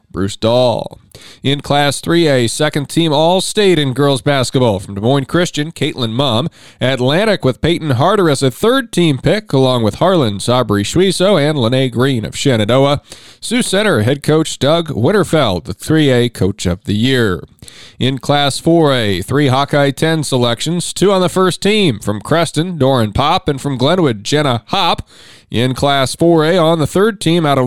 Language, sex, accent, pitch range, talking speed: English, male, American, 115-160 Hz, 175 wpm